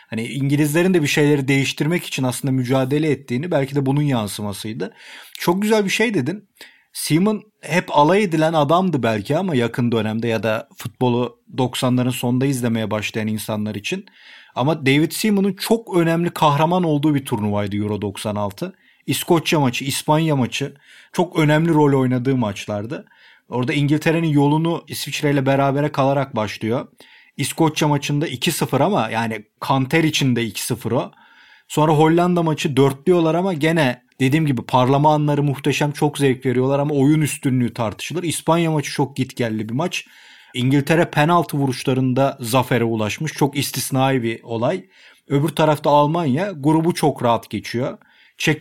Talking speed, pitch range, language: 140 wpm, 125-155 Hz, Turkish